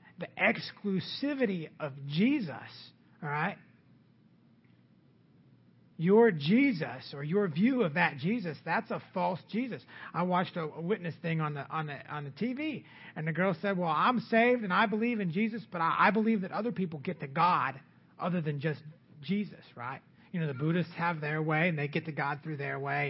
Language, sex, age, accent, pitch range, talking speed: English, male, 40-59, American, 145-190 Hz, 190 wpm